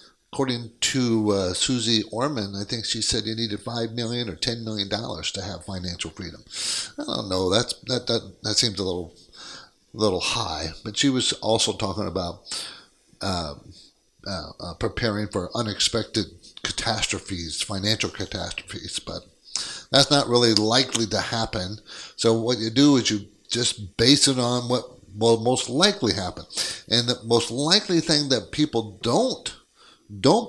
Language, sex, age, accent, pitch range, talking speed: English, male, 50-69, American, 105-130 Hz, 155 wpm